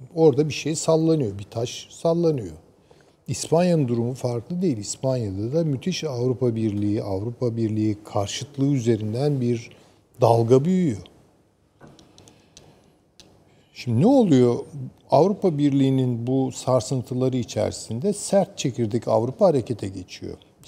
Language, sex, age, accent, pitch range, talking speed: Turkish, male, 50-69, native, 105-145 Hz, 105 wpm